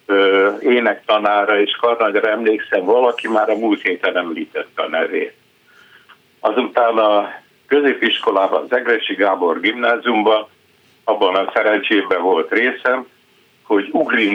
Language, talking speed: Hungarian, 115 wpm